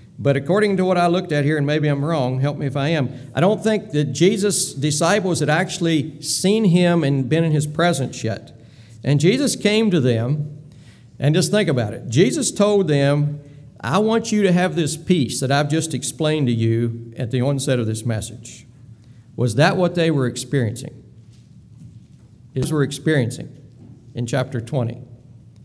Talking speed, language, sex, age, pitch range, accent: 180 wpm, English, male, 50-69, 125-170 Hz, American